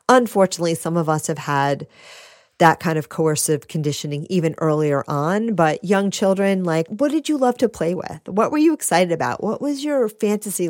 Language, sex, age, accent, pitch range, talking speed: English, female, 40-59, American, 170-250 Hz, 190 wpm